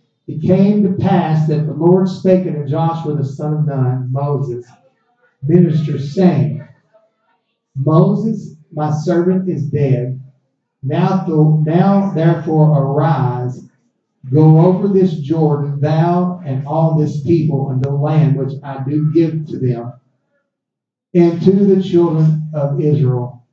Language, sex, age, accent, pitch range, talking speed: English, male, 50-69, American, 130-175 Hz, 130 wpm